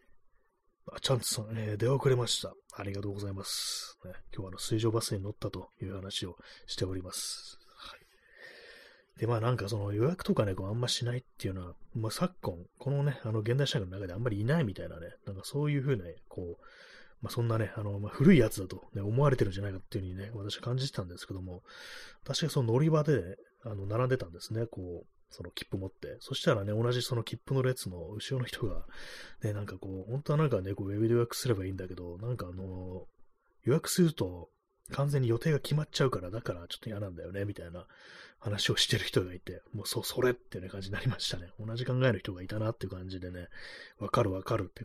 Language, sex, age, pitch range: Japanese, male, 30-49, 95-125 Hz